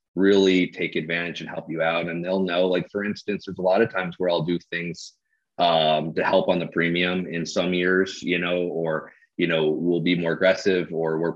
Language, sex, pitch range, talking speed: English, male, 80-90 Hz, 220 wpm